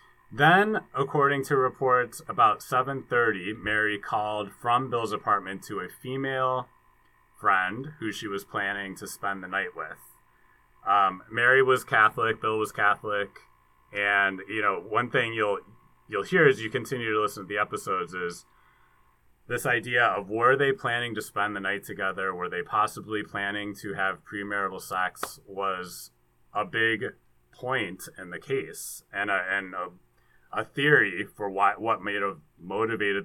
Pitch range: 95-120 Hz